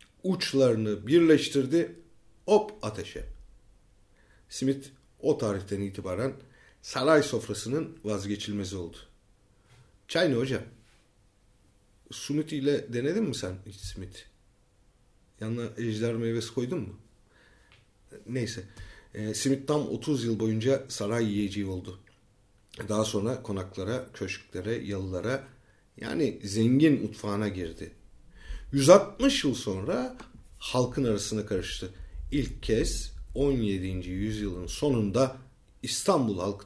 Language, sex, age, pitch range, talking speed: German, male, 40-59, 100-135 Hz, 95 wpm